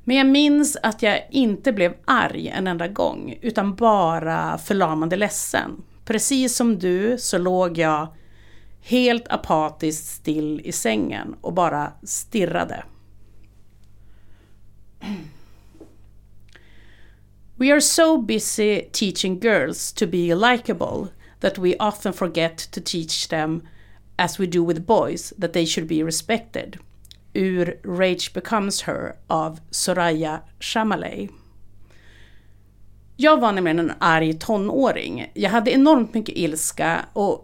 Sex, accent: female, native